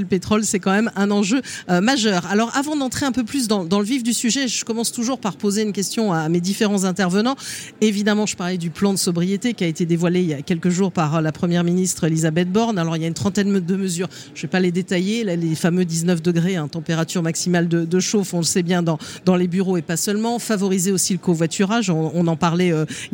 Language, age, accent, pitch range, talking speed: French, 40-59, French, 170-205 Hz, 260 wpm